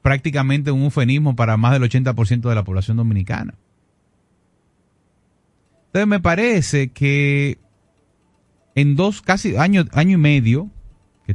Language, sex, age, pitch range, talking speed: Spanish, male, 30-49, 110-150 Hz, 120 wpm